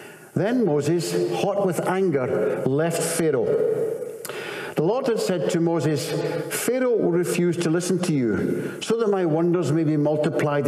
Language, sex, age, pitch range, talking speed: English, male, 60-79, 150-215 Hz, 150 wpm